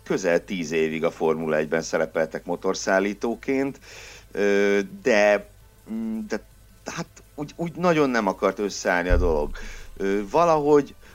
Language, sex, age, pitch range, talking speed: Hungarian, male, 60-79, 85-110 Hz, 110 wpm